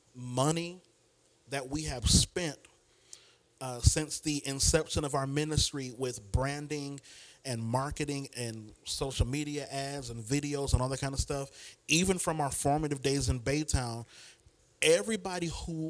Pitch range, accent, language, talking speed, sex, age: 125-170 Hz, American, English, 140 wpm, male, 30-49